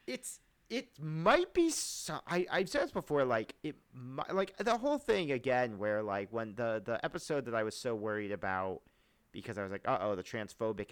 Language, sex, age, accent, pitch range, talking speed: English, male, 40-59, American, 105-140 Hz, 205 wpm